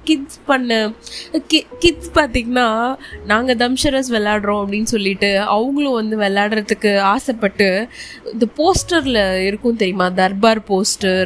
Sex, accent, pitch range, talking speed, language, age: female, native, 200-250 Hz, 100 wpm, Tamil, 20-39